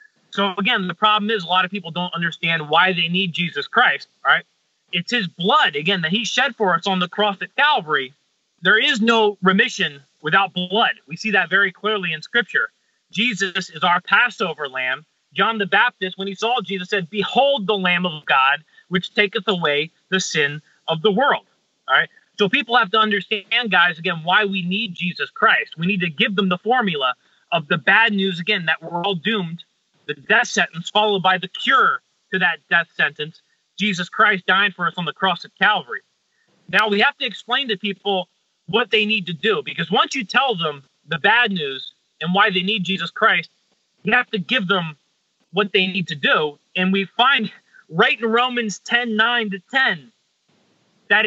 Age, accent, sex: 30-49, American, male